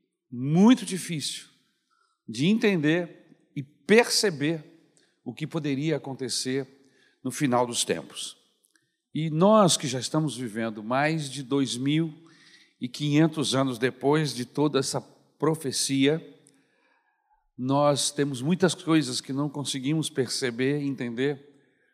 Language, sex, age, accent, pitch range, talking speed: Portuguese, male, 60-79, Brazilian, 125-165 Hz, 105 wpm